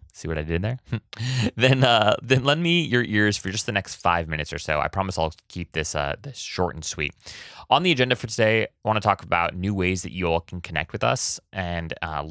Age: 20-39